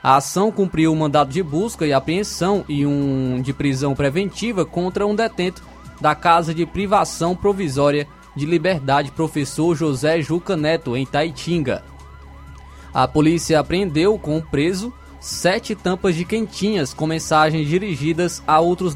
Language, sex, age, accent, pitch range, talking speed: Portuguese, male, 20-39, Brazilian, 145-180 Hz, 140 wpm